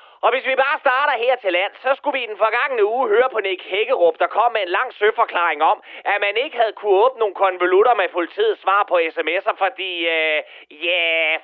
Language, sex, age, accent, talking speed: Danish, male, 30-49, native, 220 wpm